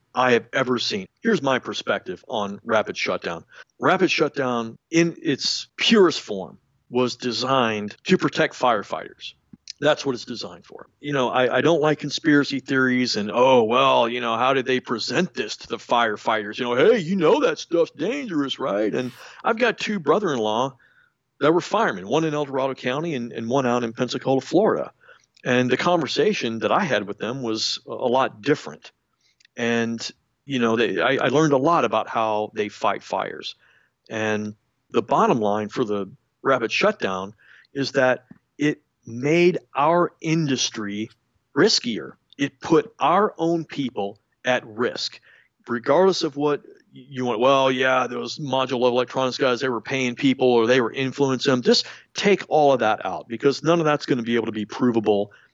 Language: English